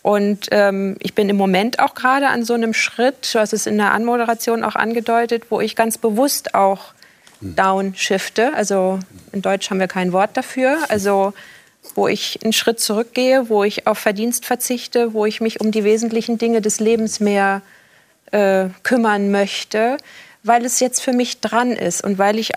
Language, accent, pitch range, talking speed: German, German, 195-240 Hz, 180 wpm